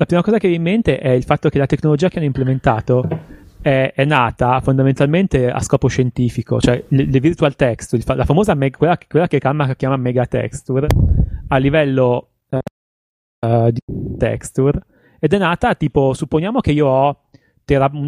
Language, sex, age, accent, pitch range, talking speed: Italian, male, 30-49, native, 120-145 Hz, 180 wpm